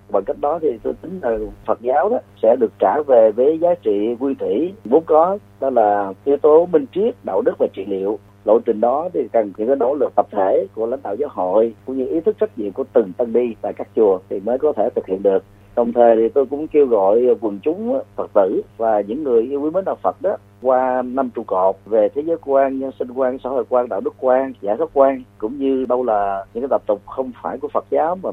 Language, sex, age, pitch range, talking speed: Vietnamese, male, 30-49, 110-165 Hz, 255 wpm